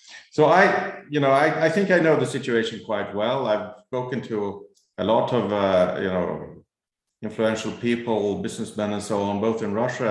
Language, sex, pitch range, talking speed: English, male, 100-120 Hz, 185 wpm